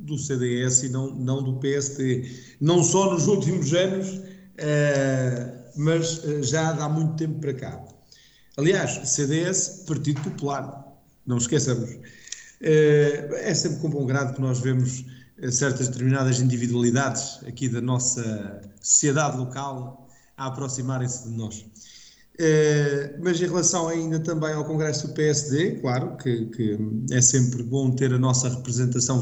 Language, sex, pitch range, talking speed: Portuguese, male, 125-150 Hz, 130 wpm